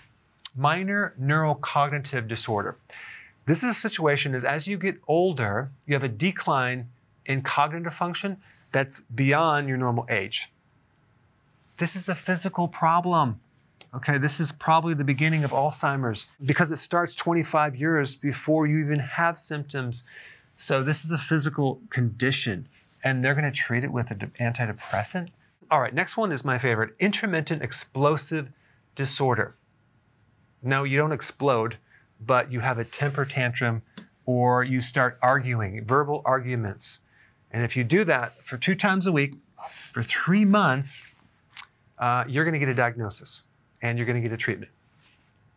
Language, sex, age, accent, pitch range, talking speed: English, male, 40-59, American, 120-155 Hz, 150 wpm